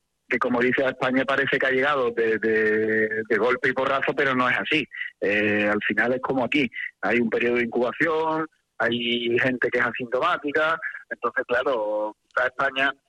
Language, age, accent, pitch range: English, 30-49, Spanish, 120-135 Hz